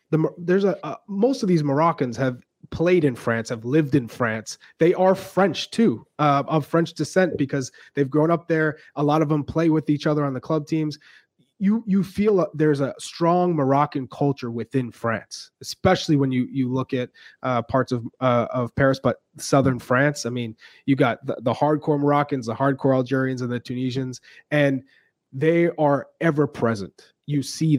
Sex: male